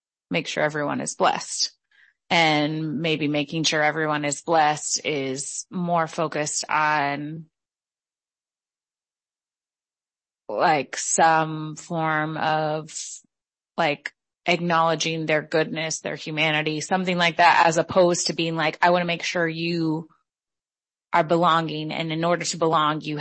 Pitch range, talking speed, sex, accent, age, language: 155-170 Hz, 125 wpm, female, American, 30-49, English